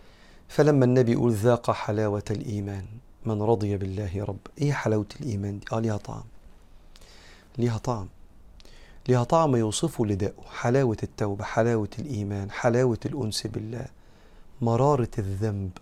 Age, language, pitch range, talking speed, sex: 40-59, Arabic, 105-130 Hz, 130 wpm, male